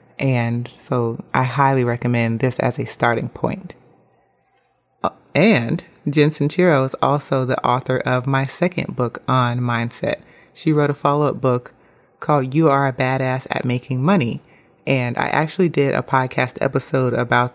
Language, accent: English, American